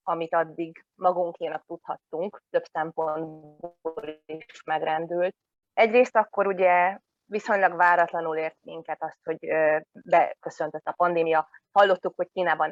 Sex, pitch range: female, 160-185 Hz